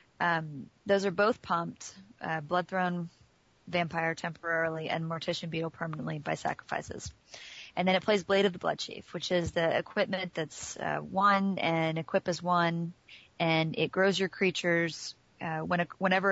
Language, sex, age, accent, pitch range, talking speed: English, female, 30-49, American, 165-190 Hz, 155 wpm